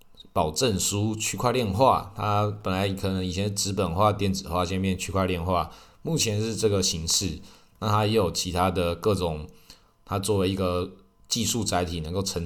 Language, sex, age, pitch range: Chinese, male, 20-39, 90-110 Hz